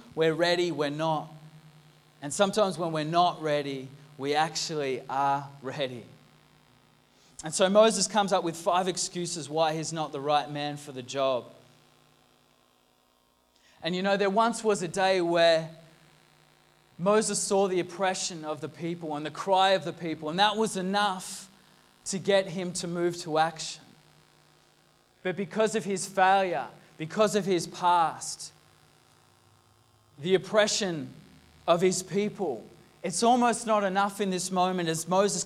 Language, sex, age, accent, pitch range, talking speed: English, male, 20-39, Australian, 155-190 Hz, 145 wpm